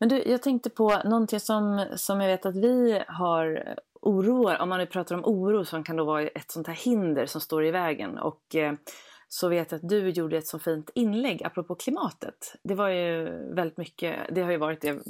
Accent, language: native, Swedish